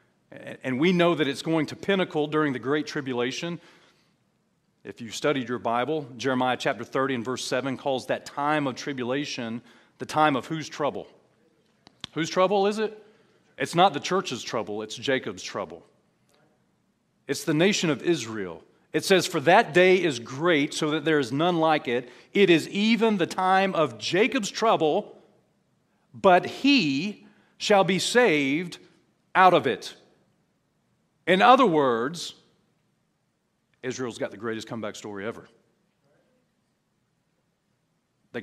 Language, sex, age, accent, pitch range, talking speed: English, male, 40-59, American, 130-180 Hz, 140 wpm